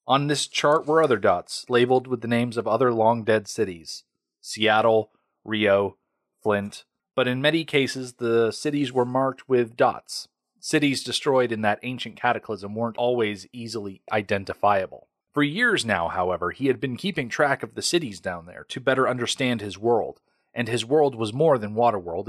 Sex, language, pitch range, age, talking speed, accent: male, English, 110-140 Hz, 30-49, 170 wpm, American